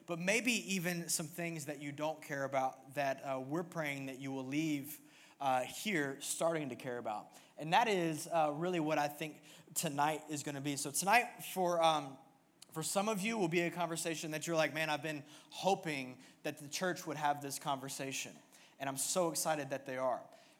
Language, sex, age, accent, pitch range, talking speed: English, male, 20-39, American, 135-160 Hz, 205 wpm